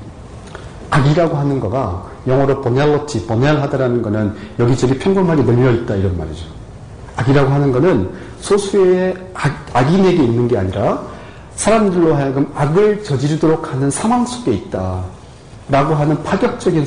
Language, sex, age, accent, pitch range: Korean, male, 40-59, native, 110-145 Hz